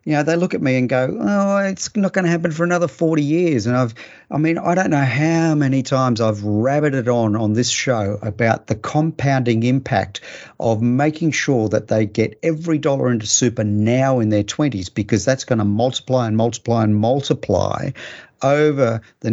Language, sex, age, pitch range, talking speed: English, male, 50-69, 110-145 Hz, 200 wpm